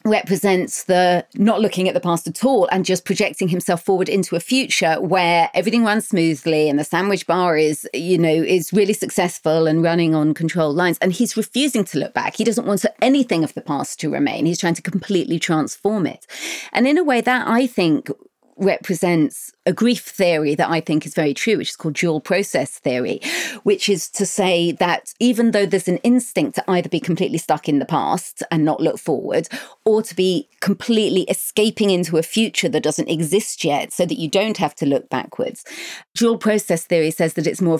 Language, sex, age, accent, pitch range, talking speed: English, female, 30-49, British, 165-205 Hz, 205 wpm